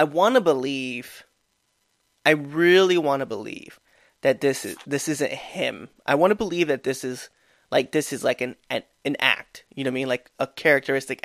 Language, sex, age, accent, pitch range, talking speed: English, male, 20-39, American, 130-165 Hz, 215 wpm